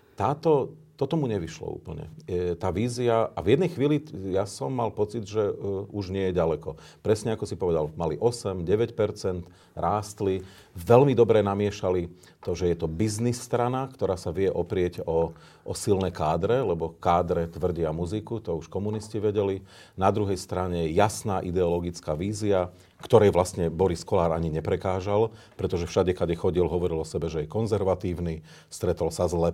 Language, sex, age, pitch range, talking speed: Slovak, male, 40-59, 85-110 Hz, 165 wpm